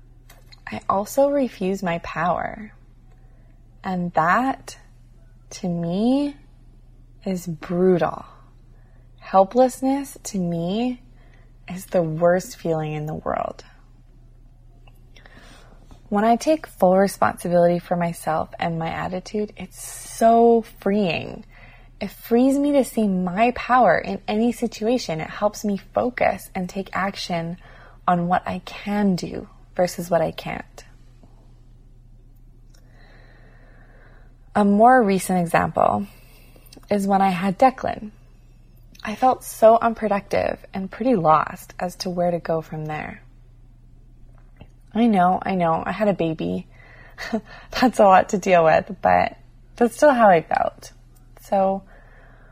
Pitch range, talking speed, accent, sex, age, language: 125-205 Hz, 120 wpm, American, female, 20-39, English